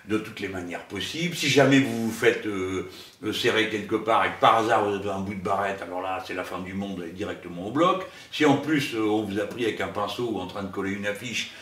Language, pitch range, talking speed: French, 95-130 Hz, 275 wpm